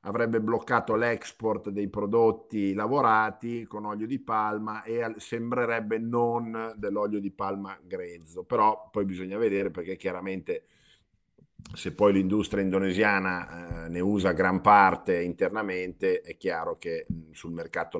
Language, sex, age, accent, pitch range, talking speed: Italian, male, 50-69, native, 90-110 Hz, 125 wpm